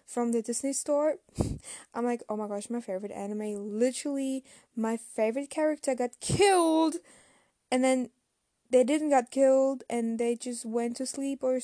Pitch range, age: 225-265 Hz, 10-29